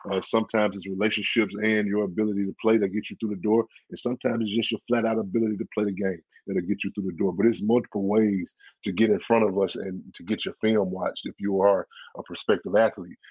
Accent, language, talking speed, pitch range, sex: American, English, 245 wpm, 100-115 Hz, male